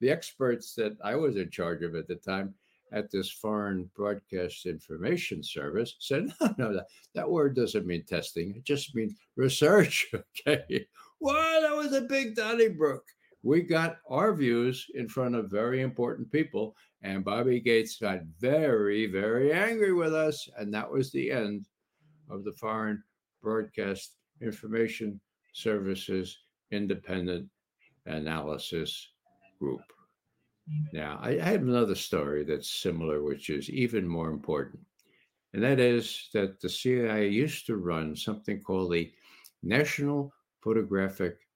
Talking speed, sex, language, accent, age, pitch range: 140 wpm, male, English, American, 60-79, 100-155 Hz